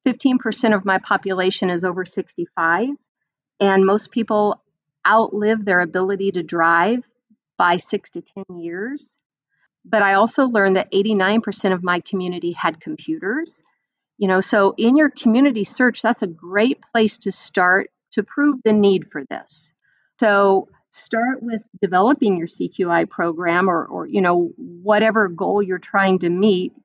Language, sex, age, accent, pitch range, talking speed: English, female, 40-59, American, 185-235 Hz, 145 wpm